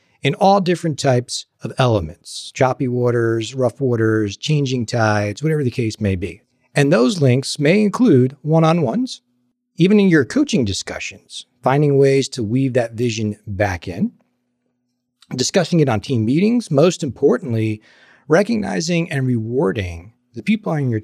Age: 50-69